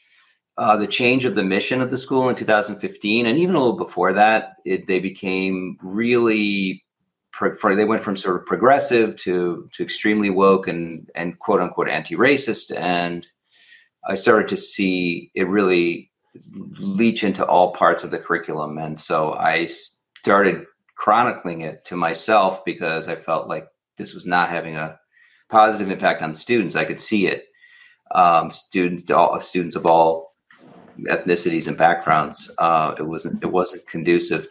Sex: male